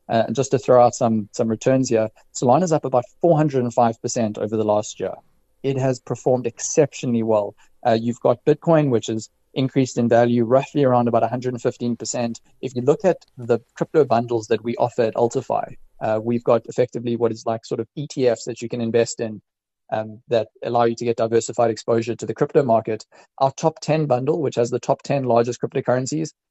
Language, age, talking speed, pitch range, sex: English, 20-39, 215 wpm, 115-135 Hz, male